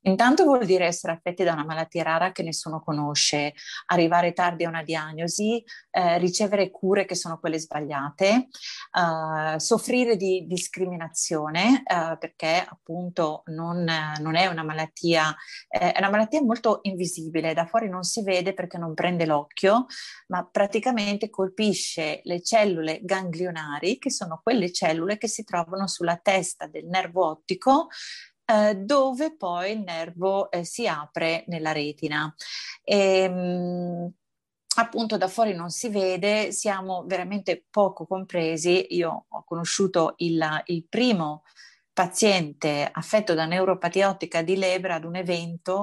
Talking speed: 135 wpm